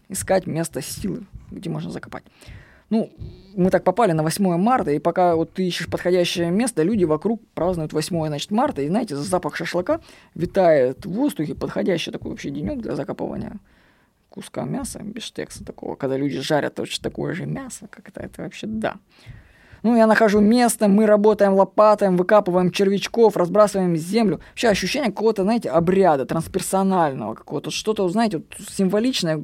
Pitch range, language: 170-225 Hz, Russian